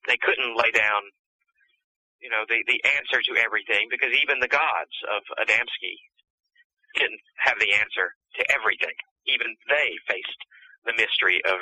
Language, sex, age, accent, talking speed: English, male, 40-59, American, 150 wpm